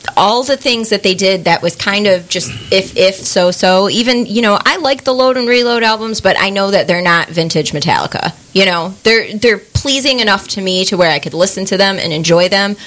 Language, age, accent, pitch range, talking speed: English, 30-49, American, 170-220 Hz, 235 wpm